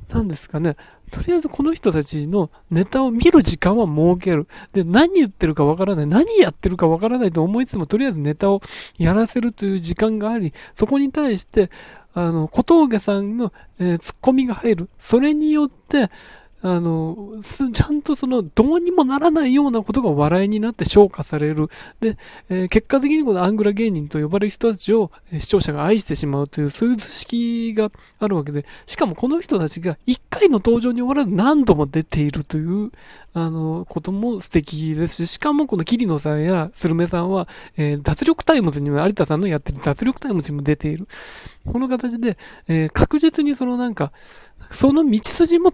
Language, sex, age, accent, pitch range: Japanese, male, 20-39, native, 165-245 Hz